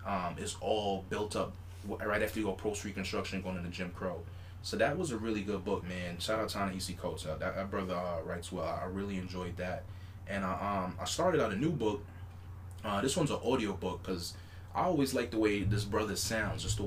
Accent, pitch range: American, 90-100 Hz